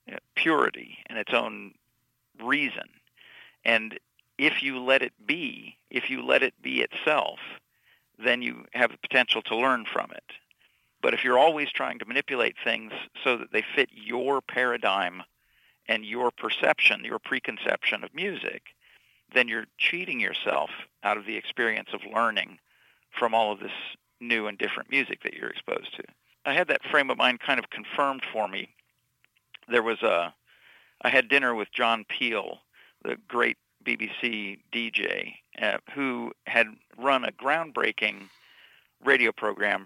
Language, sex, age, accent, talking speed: English, male, 50-69, American, 150 wpm